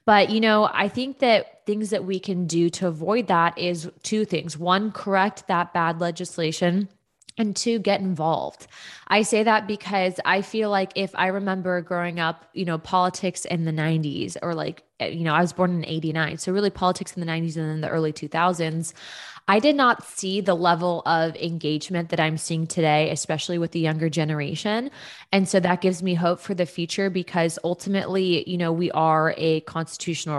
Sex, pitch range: female, 165-195 Hz